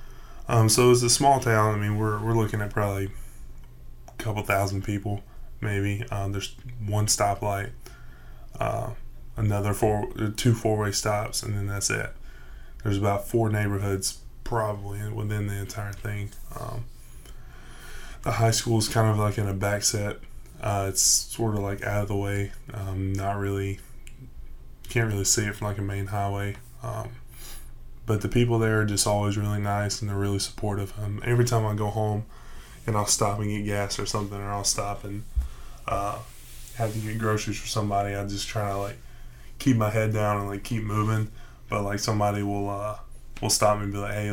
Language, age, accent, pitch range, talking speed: English, 10-29, American, 100-110 Hz, 185 wpm